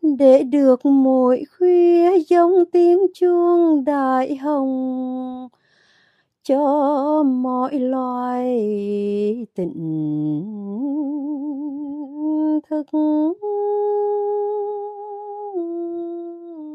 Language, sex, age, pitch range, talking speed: Vietnamese, female, 30-49, 265-345 Hz, 50 wpm